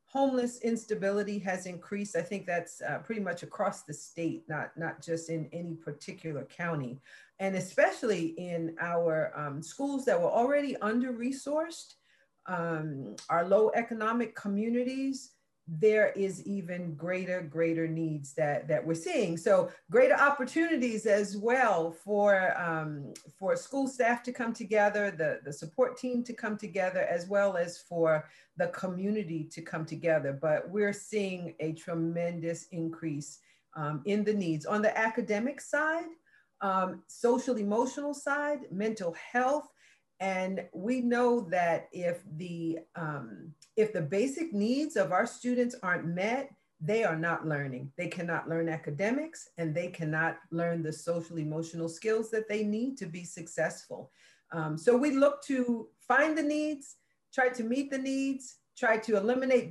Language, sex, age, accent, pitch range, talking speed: English, female, 40-59, American, 165-240 Hz, 145 wpm